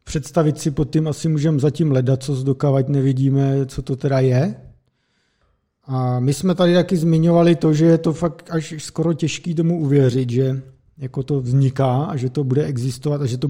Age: 50-69